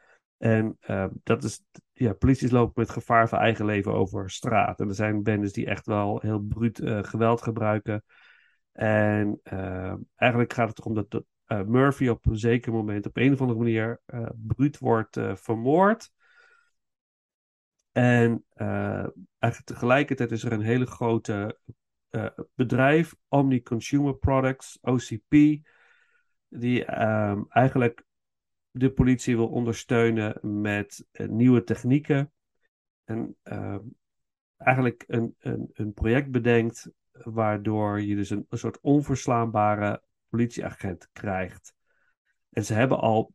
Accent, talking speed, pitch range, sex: Dutch, 135 wpm, 110-130 Hz, male